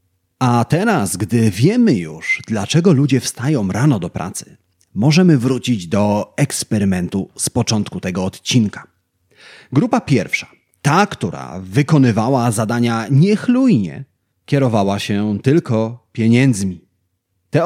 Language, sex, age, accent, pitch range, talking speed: Polish, male, 30-49, native, 105-165 Hz, 105 wpm